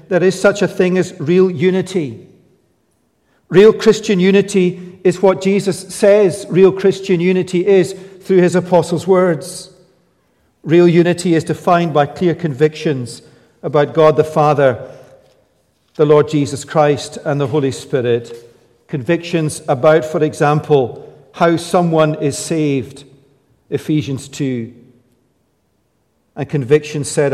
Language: English